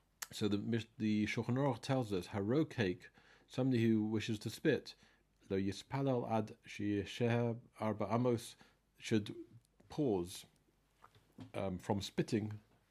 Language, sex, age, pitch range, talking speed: English, male, 40-59, 95-120 Hz, 105 wpm